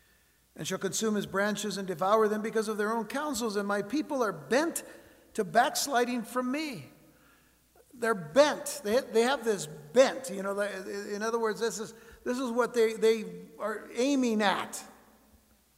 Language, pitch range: English, 200-250 Hz